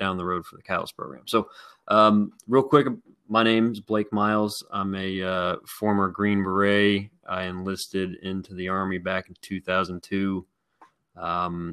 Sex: male